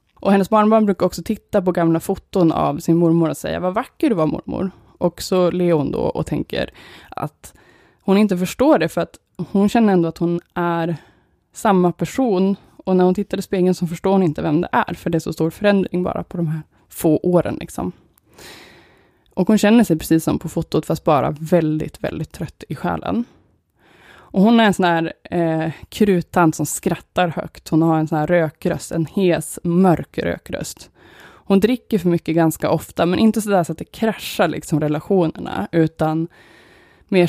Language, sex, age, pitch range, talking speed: Swedish, female, 20-39, 160-190 Hz, 190 wpm